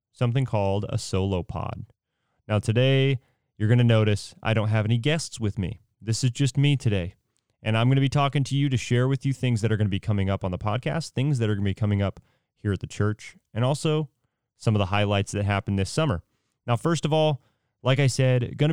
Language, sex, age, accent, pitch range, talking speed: English, male, 30-49, American, 105-135 Hz, 245 wpm